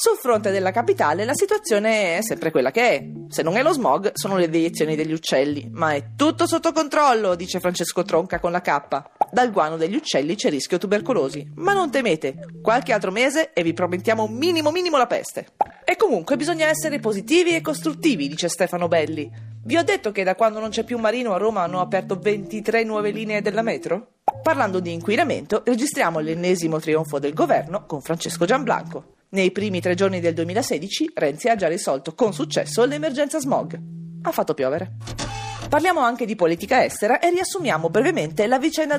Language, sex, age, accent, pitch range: Japanese, female, 30-49, Italian, 165-270 Hz